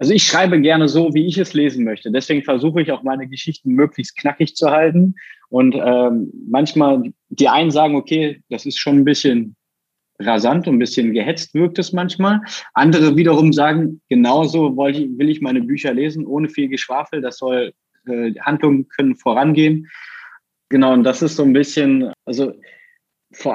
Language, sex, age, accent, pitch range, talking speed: German, male, 20-39, German, 125-165 Hz, 175 wpm